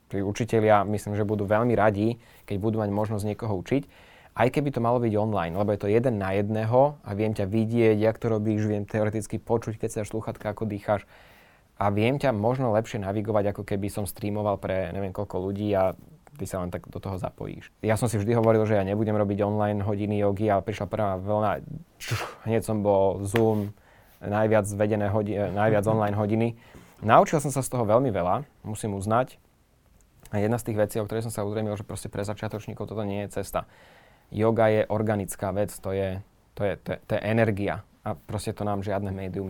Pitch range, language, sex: 100-110 Hz, Slovak, male